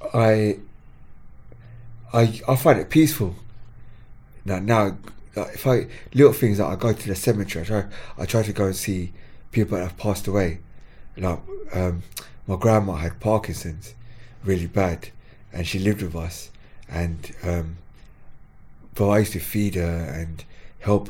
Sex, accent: male, British